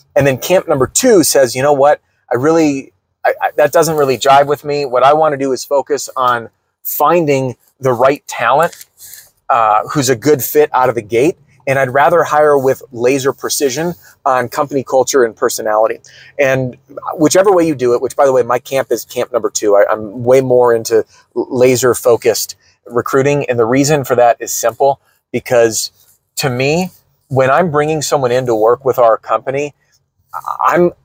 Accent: American